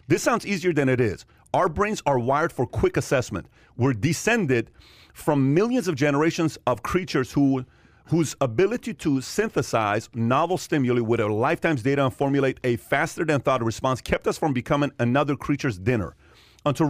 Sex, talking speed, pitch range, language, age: male, 155 wpm, 115-145 Hz, English, 40-59